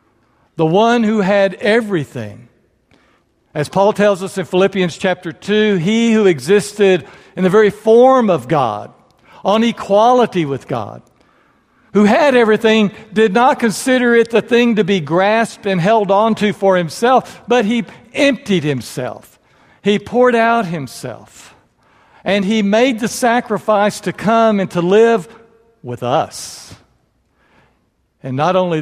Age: 60-79